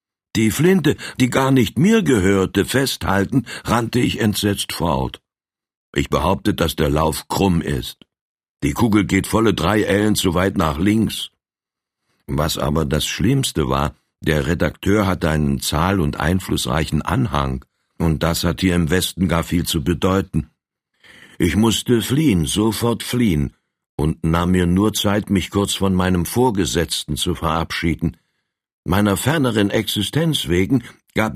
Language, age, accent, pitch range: German, 60-79, German, 80-110 Hz